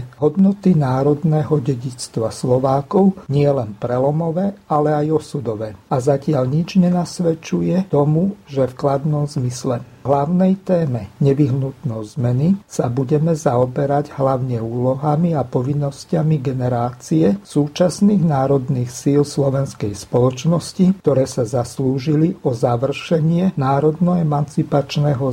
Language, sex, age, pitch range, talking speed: Slovak, male, 50-69, 130-160 Hz, 95 wpm